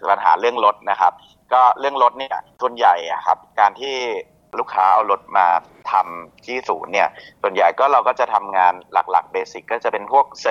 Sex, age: male, 30-49